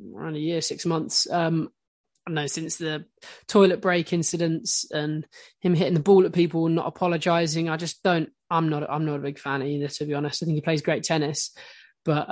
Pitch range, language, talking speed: 160-180 Hz, English, 210 wpm